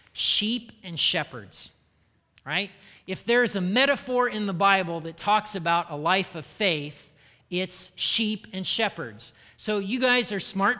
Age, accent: 40-59, American